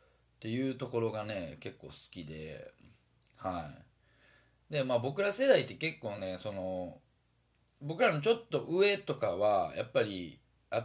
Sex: male